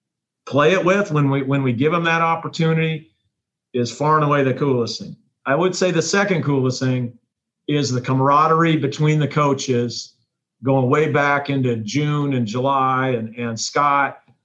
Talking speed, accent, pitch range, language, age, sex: 170 wpm, American, 125-155 Hz, English, 50-69, male